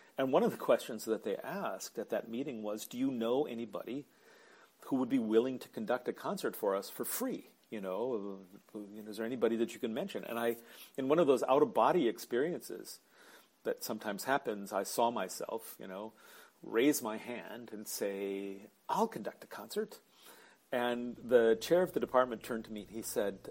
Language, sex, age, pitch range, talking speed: English, male, 40-59, 110-140 Hz, 190 wpm